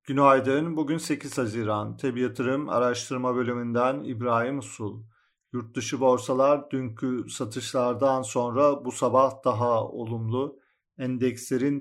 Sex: male